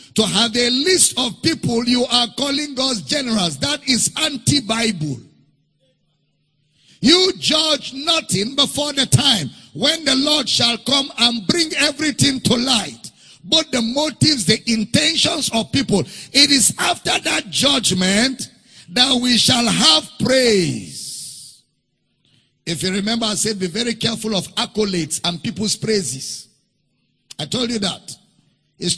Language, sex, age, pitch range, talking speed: English, male, 50-69, 175-260 Hz, 135 wpm